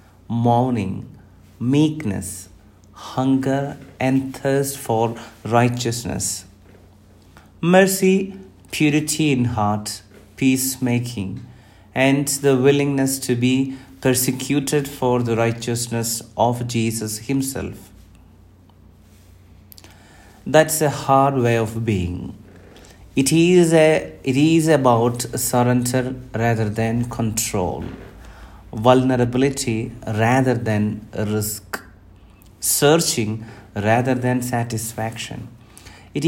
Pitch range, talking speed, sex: 100-130 Hz, 80 wpm, male